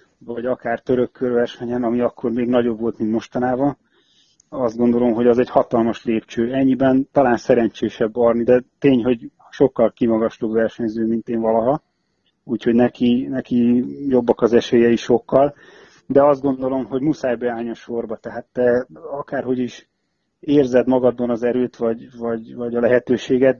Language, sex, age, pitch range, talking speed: Hungarian, male, 30-49, 115-125 Hz, 150 wpm